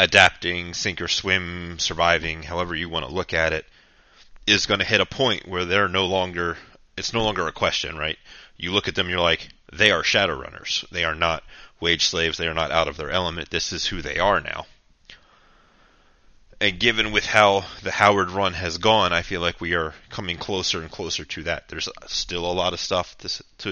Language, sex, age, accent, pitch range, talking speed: English, male, 30-49, American, 85-100 Hz, 215 wpm